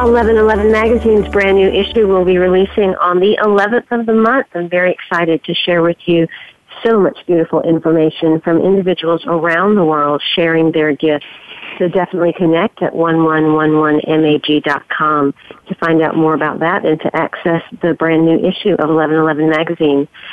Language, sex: English, female